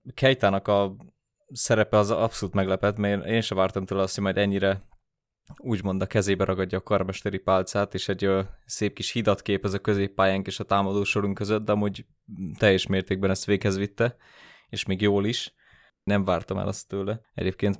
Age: 20-39